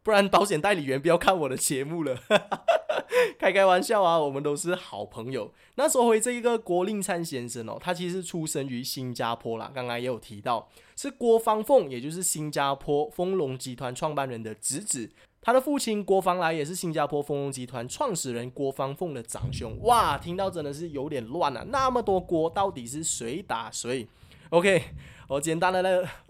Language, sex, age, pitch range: Chinese, male, 20-39, 125-185 Hz